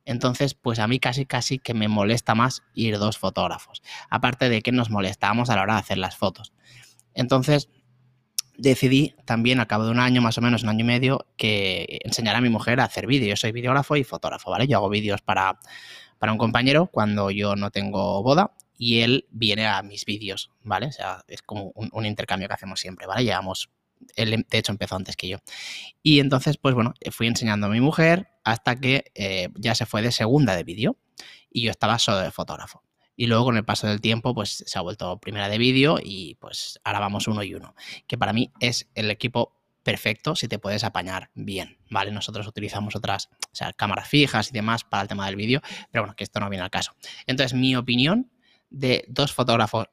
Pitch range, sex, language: 105-130 Hz, male, Spanish